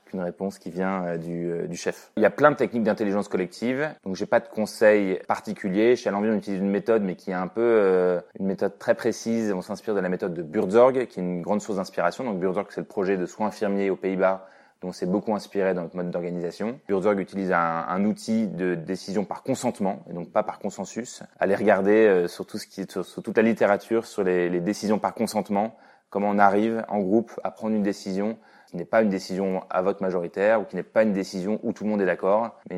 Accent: French